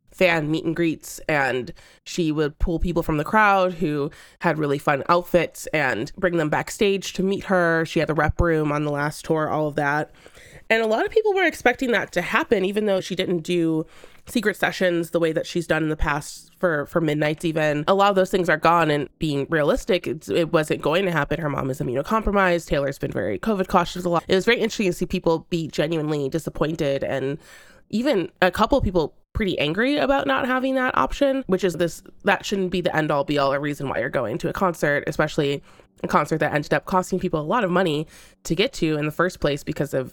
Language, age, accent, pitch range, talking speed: English, 20-39, American, 150-185 Hz, 225 wpm